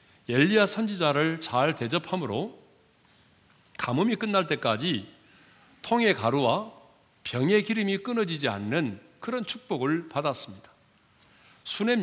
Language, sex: Korean, male